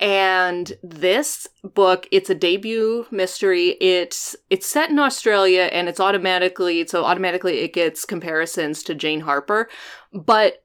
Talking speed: 135 wpm